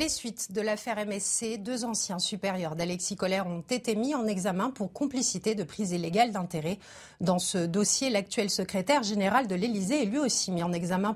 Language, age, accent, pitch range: French, 40-59, French, 195-260 Hz